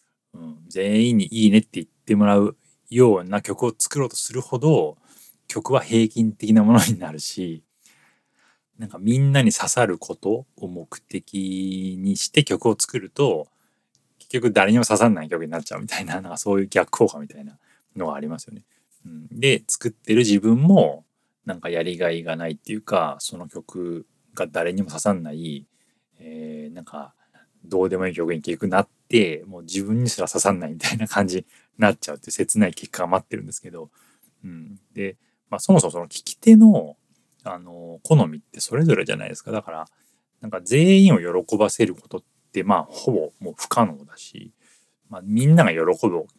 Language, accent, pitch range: Japanese, native, 90-120 Hz